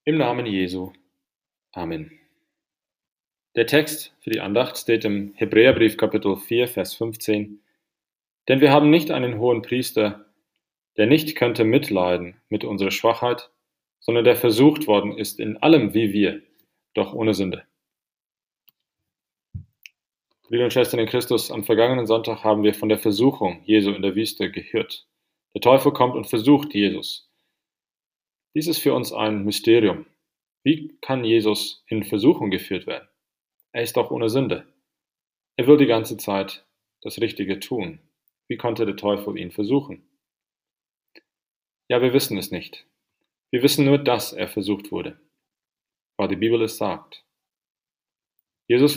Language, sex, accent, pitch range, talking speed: English, male, German, 105-130 Hz, 140 wpm